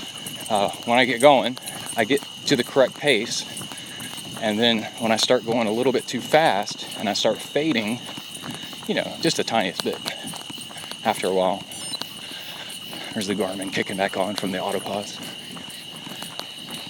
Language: English